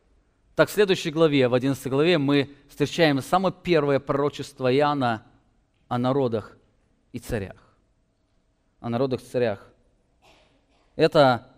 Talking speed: 115 wpm